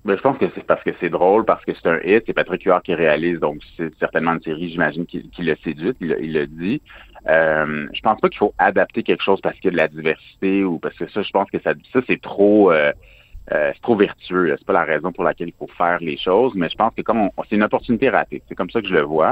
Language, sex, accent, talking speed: French, male, French, 275 wpm